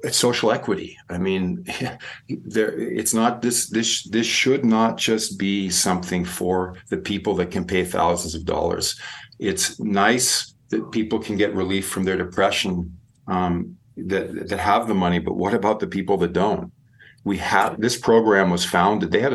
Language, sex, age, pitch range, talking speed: English, male, 50-69, 90-110 Hz, 175 wpm